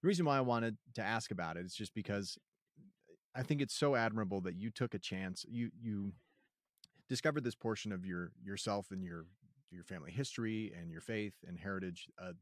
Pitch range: 95-115 Hz